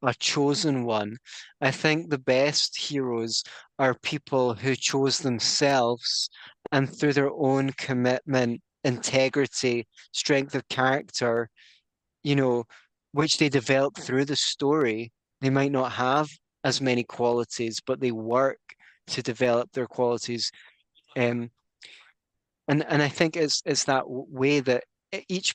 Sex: male